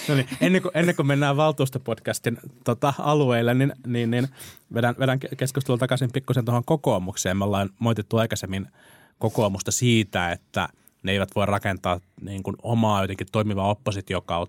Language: Finnish